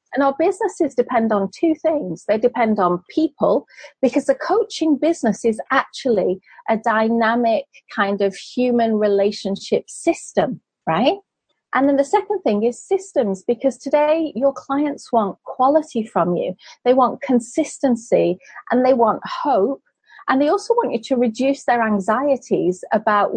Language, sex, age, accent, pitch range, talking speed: English, female, 40-59, British, 205-285 Hz, 145 wpm